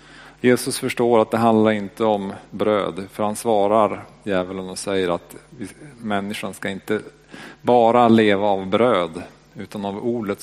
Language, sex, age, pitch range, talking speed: Swedish, male, 40-59, 105-125 Hz, 150 wpm